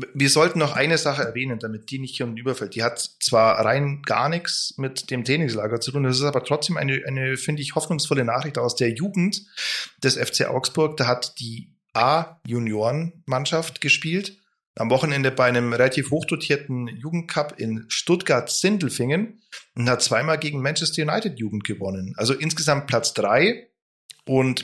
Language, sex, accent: German, male, German